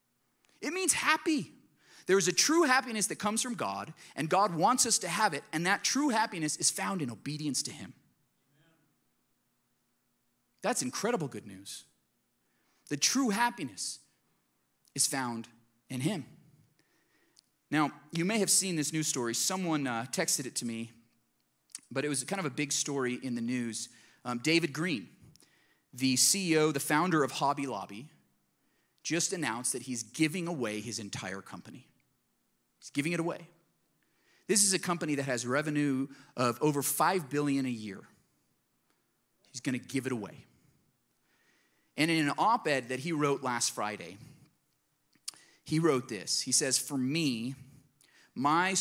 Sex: male